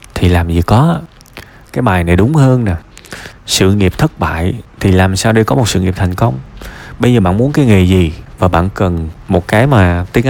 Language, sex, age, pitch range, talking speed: Vietnamese, male, 20-39, 95-135 Hz, 220 wpm